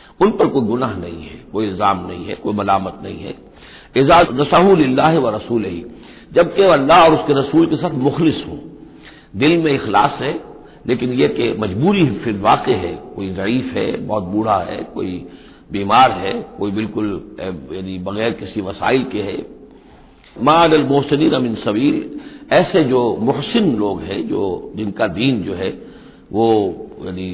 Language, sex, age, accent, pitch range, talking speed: Hindi, male, 60-79, native, 105-160 Hz, 155 wpm